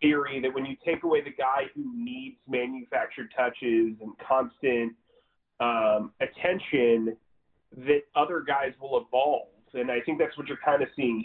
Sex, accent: male, American